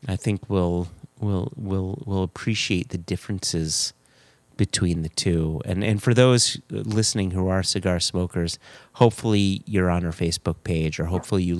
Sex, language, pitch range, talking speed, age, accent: male, English, 90-115 Hz, 155 wpm, 30-49, American